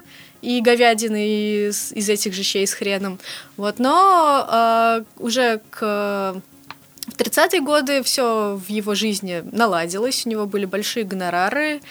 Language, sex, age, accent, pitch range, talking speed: Russian, female, 20-39, native, 205-265 Hz, 135 wpm